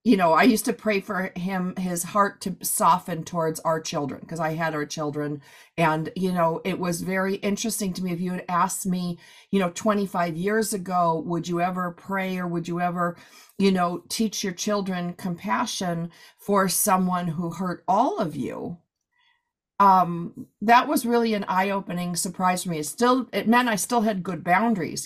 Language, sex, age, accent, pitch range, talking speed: English, female, 40-59, American, 170-205 Hz, 185 wpm